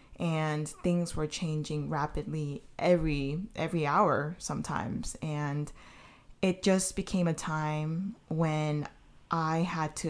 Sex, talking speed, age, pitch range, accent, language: female, 115 wpm, 20-39, 150-175 Hz, American, English